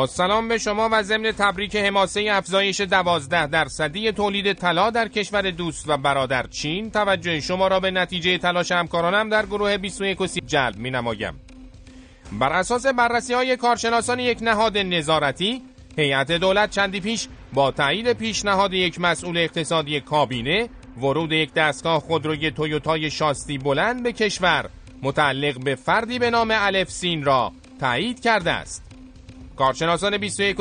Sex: male